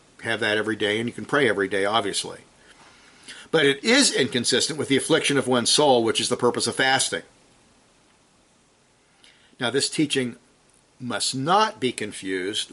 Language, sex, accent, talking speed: English, male, American, 160 wpm